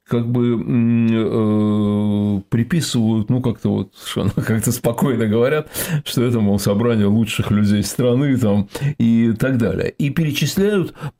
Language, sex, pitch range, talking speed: Russian, male, 100-130 Hz, 130 wpm